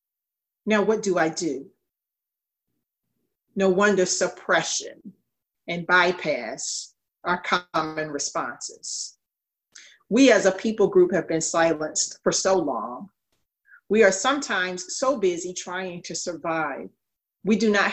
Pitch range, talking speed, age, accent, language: 180-215 Hz, 115 wpm, 40-59, American, English